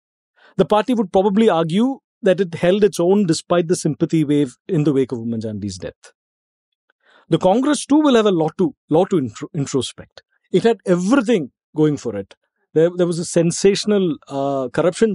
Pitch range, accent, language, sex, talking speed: 145-205 Hz, Indian, English, male, 180 wpm